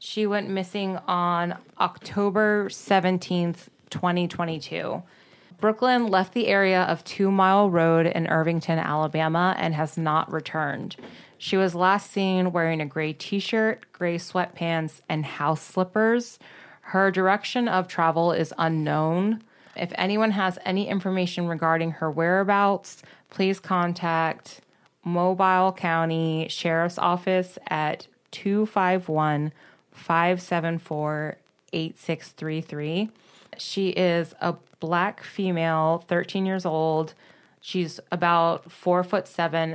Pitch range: 160-190 Hz